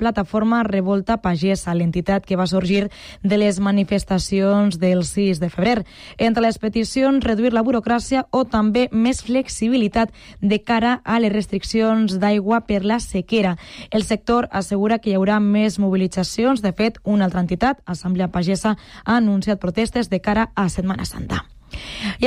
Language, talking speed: Spanish, 155 wpm